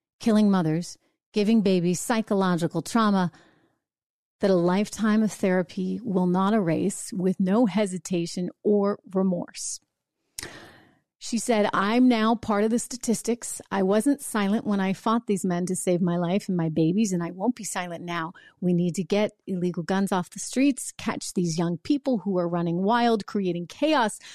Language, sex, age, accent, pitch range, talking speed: English, female, 40-59, American, 190-255 Hz, 165 wpm